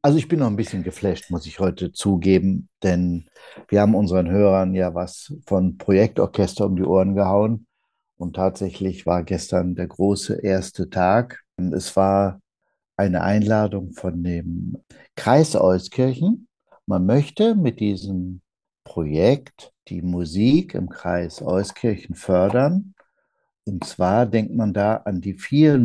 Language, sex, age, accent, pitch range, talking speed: German, male, 60-79, German, 95-120 Hz, 135 wpm